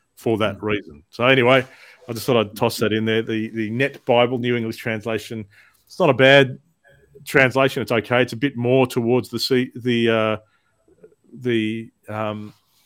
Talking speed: 175 wpm